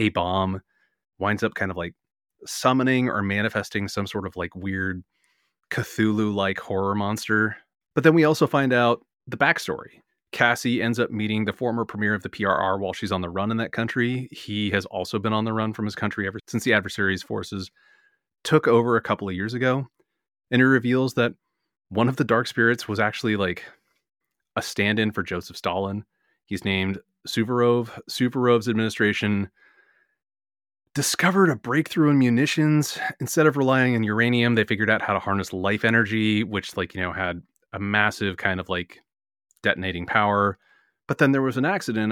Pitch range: 95-120 Hz